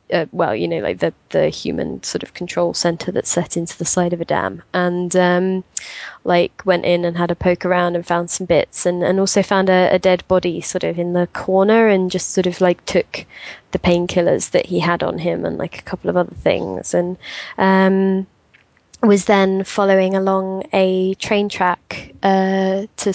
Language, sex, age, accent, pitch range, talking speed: English, female, 20-39, British, 185-220 Hz, 200 wpm